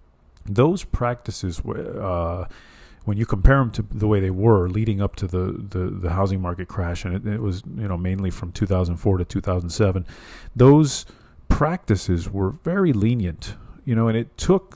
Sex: male